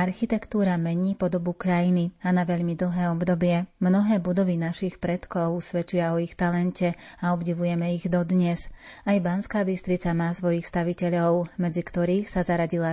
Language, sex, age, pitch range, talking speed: Slovak, female, 30-49, 170-185 Hz, 145 wpm